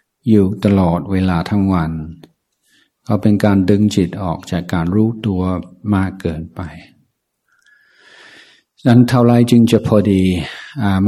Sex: male